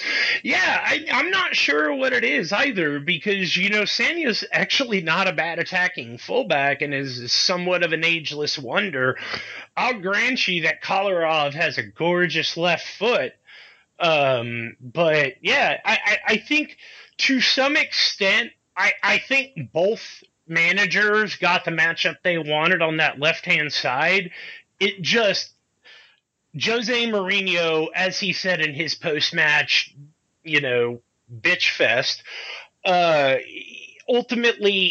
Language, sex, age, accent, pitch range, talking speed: English, male, 30-49, American, 160-210 Hz, 130 wpm